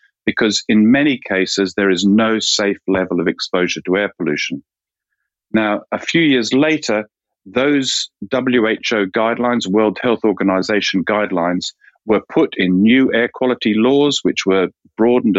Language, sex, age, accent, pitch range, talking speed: English, male, 50-69, British, 95-120 Hz, 140 wpm